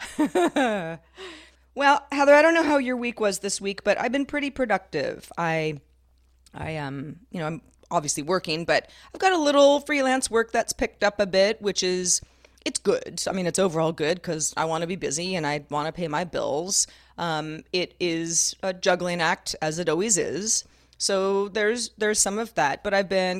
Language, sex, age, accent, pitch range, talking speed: English, female, 30-49, American, 165-230 Hz, 195 wpm